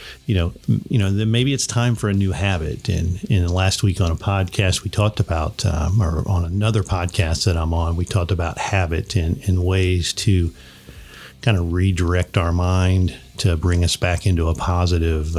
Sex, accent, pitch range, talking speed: male, American, 85-100 Hz, 195 wpm